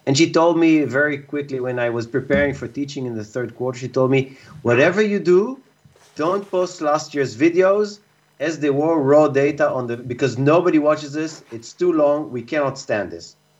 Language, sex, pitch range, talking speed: English, male, 120-160 Hz, 200 wpm